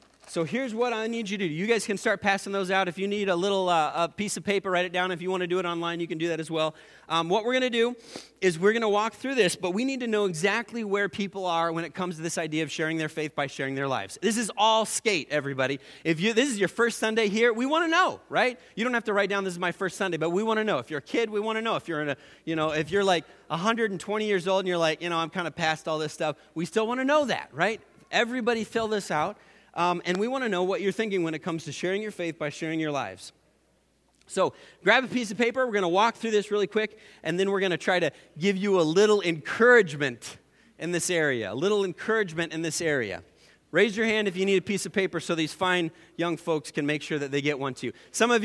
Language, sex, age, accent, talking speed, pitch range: English, male, 30-49, American, 290 wpm, 160-210 Hz